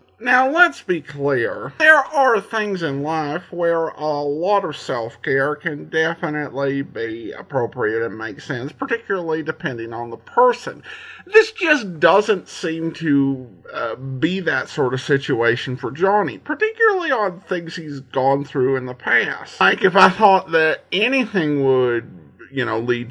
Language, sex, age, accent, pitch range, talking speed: English, male, 50-69, American, 135-195 Hz, 150 wpm